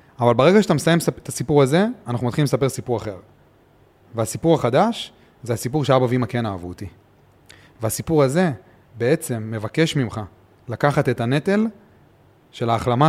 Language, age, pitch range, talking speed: Hebrew, 30-49, 110-140 Hz, 140 wpm